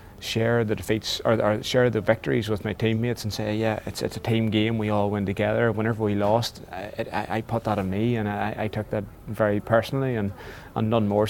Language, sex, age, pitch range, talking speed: English, male, 20-39, 100-115 Hz, 240 wpm